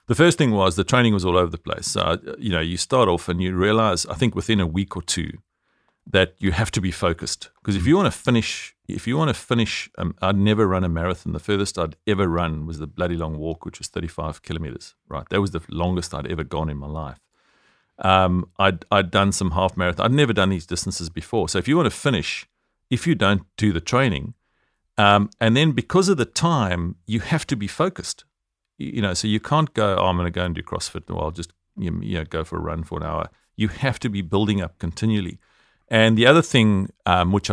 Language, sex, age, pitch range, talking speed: English, male, 40-59, 85-110 Hz, 245 wpm